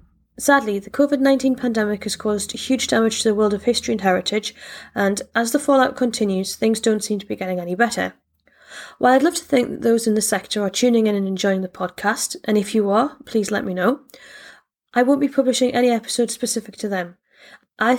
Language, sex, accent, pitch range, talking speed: English, female, British, 210-250 Hz, 210 wpm